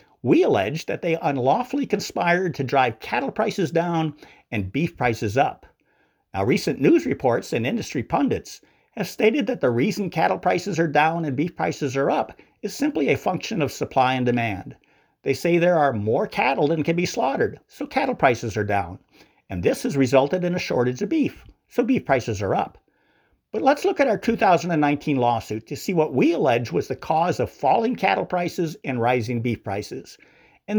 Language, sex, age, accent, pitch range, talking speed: English, male, 50-69, American, 135-210 Hz, 190 wpm